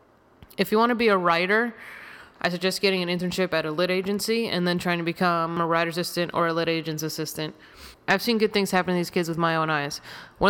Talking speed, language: 240 wpm, English